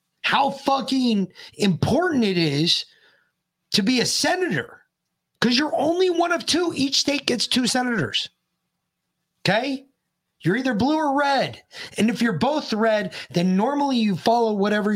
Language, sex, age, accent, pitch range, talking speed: English, male, 30-49, American, 145-230 Hz, 145 wpm